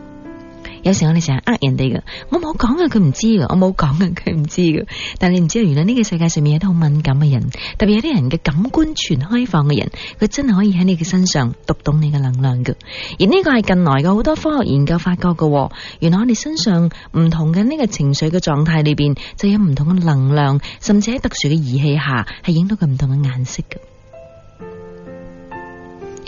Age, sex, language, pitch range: 20-39, female, Chinese, 140-190 Hz